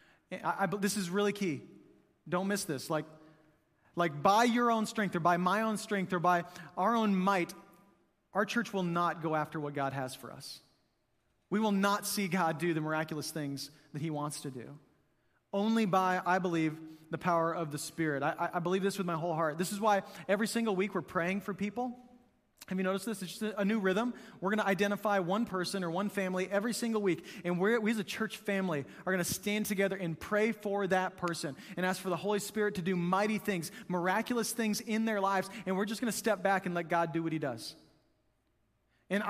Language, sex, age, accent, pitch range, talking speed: English, male, 30-49, American, 170-215 Hz, 215 wpm